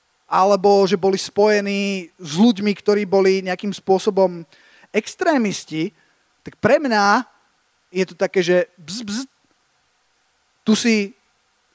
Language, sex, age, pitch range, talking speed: Slovak, male, 20-39, 195-240 Hz, 110 wpm